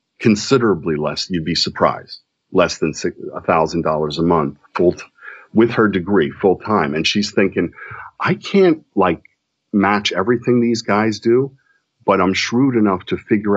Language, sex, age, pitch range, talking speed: English, male, 40-59, 80-110 Hz, 160 wpm